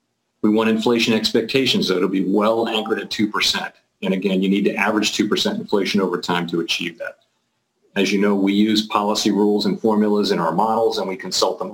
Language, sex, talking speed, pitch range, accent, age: English, male, 205 wpm, 95-115 Hz, American, 40-59